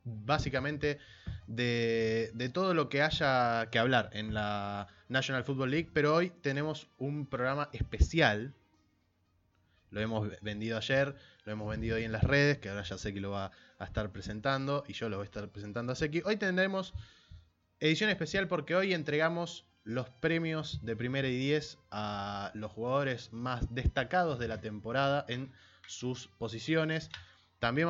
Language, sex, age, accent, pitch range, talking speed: Spanish, male, 20-39, Argentinian, 105-150 Hz, 160 wpm